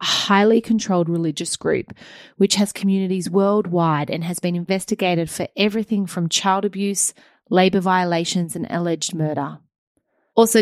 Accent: Australian